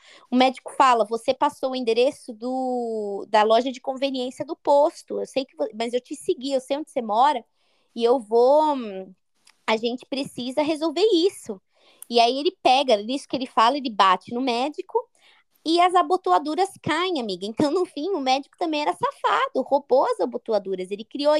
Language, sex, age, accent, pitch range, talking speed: Portuguese, female, 20-39, Brazilian, 235-305 Hz, 180 wpm